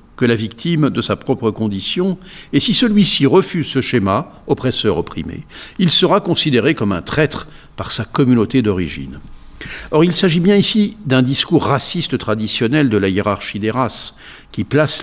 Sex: male